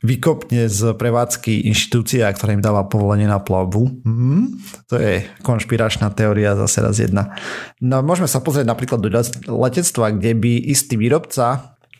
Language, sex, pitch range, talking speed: Slovak, male, 100-120 Hz, 140 wpm